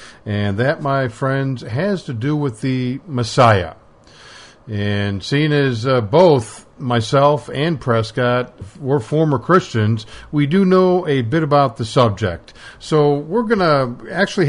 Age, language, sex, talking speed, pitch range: 50-69, English, male, 140 wpm, 115-150 Hz